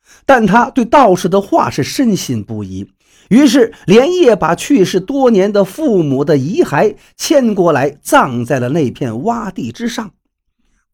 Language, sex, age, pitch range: Chinese, male, 50-69, 165-265 Hz